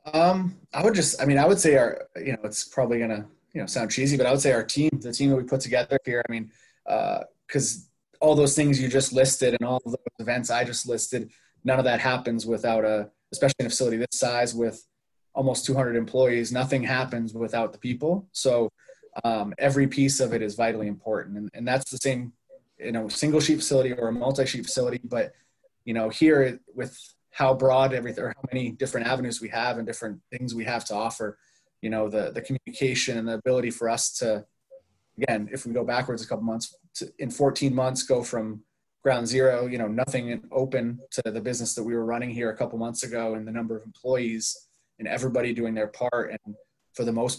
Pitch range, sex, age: 115-130 Hz, male, 20-39